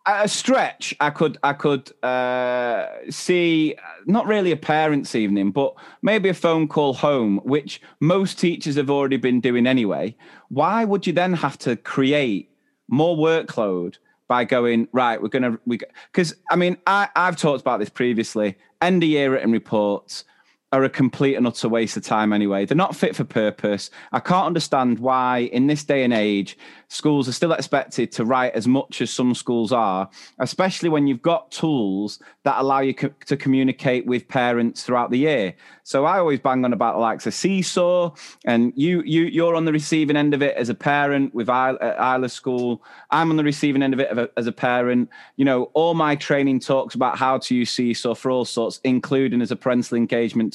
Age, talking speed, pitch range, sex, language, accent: 30-49, 195 wpm, 120-160 Hz, male, English, British